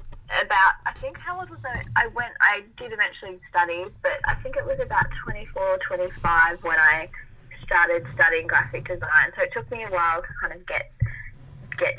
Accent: Australian